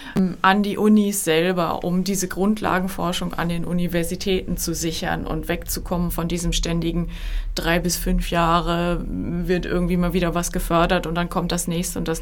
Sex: female